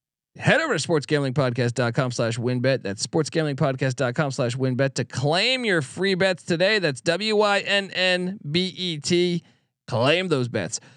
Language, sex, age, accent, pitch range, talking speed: English, male, 40-59, American, 135-195 Hz, 150 wpm